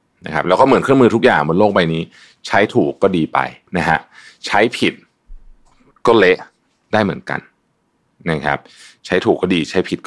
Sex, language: male, Thai